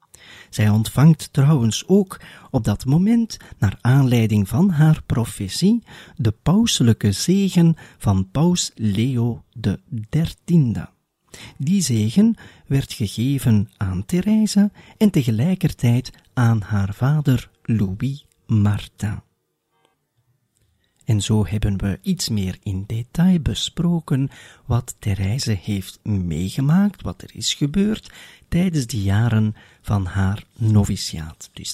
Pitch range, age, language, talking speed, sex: 100-155 Hz, 40-59, Dutch, 105 wpm, male